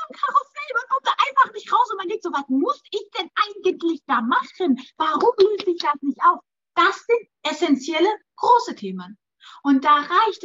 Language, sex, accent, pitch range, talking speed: German, female, German, 245-330 Hz, 185 wpm